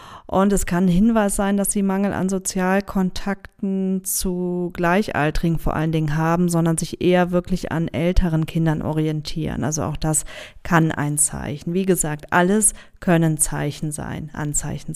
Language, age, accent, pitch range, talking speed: German, 40-59, German, 160-185 Hz, 150 wpm